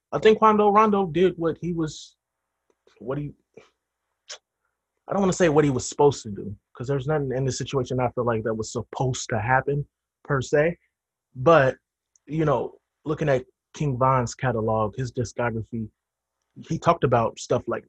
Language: English